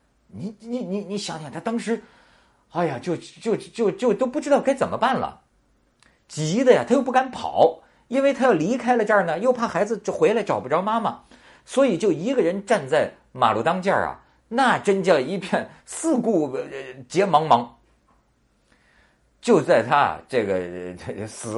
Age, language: 50-69, Chinese